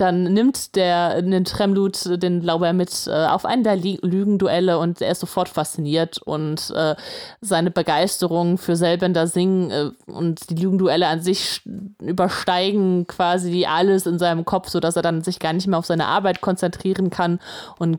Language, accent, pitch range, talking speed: German, German, 165-185 Hz, 175 wpm